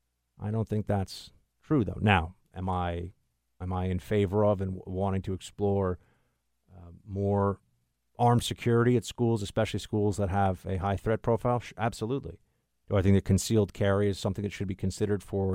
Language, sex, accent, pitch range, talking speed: English, male, American, 90-110 Hz, 180 wpm